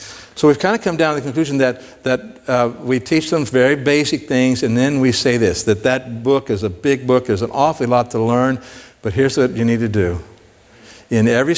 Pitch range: 110-155 Hz